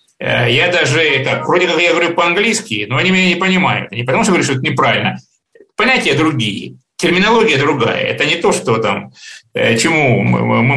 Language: Russian